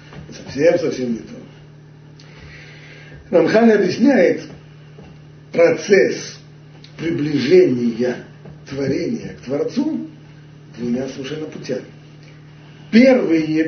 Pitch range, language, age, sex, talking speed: 130-160 Hz, Russian, 50-69, male, 55 wpm